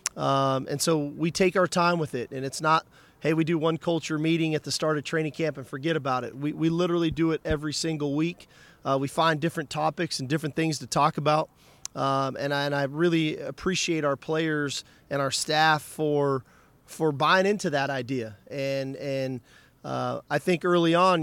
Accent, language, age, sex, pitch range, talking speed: American, English, 40-59, male, 140-170 Hz, 205 wpm